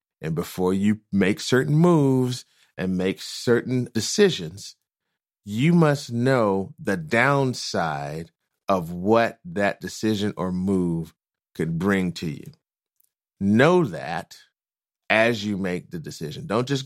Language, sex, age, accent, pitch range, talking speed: English, male, 30-49, American, 100-135 Hz, 120 wpm